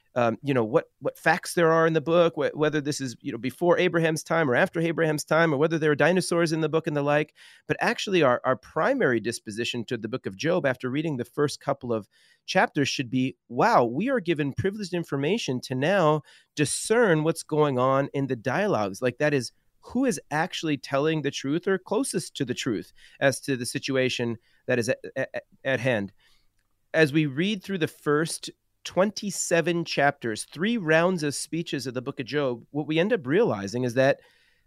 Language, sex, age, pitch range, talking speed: English, male, 40-59, 130-170 Hz, 205 wpm